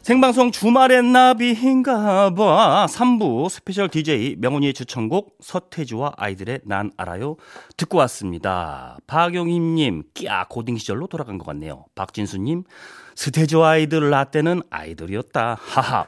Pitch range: 105-175 Hz